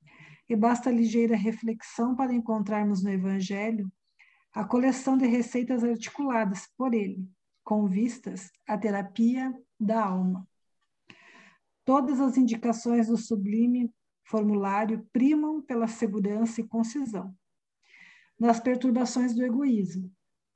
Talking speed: 105 wpm